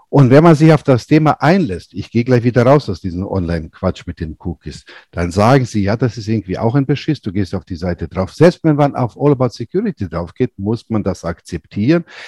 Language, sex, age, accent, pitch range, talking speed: German, male, 60-79, German, 100-150 Hz, 235 wpm